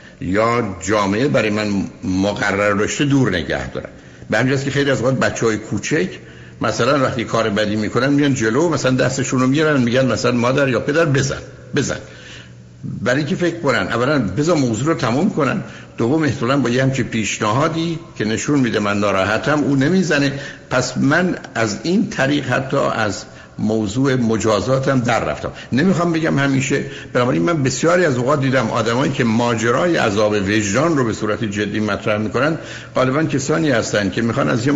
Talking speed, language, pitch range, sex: 165 wpm, Persian, 110-145 Hz, male